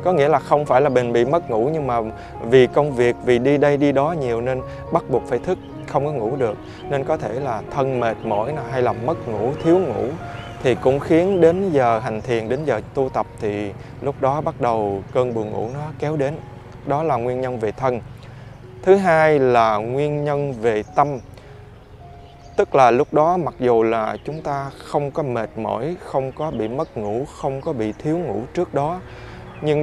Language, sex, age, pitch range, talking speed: Vietnamese, male, 20-39, 115-150 Hz, 210 wpm